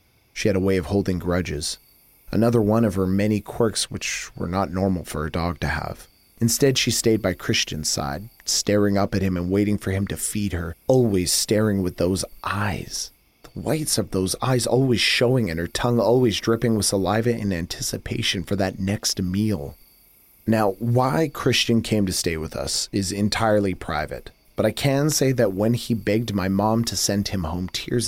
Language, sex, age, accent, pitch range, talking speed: English, male, 30-49, American, 85-110 Hz, 190 wpm